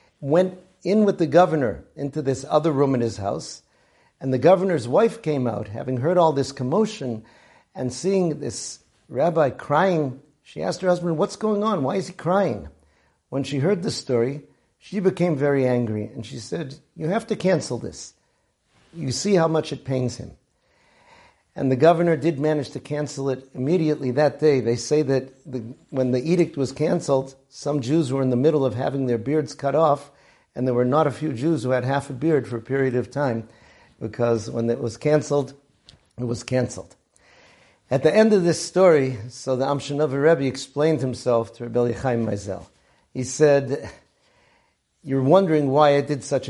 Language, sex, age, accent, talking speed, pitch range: English, male, 50-69, American, 185 wpm, 125-155 Hz